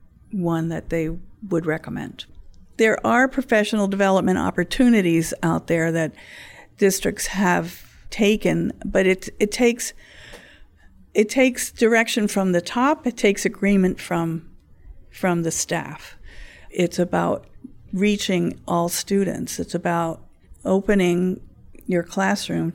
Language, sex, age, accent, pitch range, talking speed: English, female, 50-69, American, 165-195 Hz, 115 wpm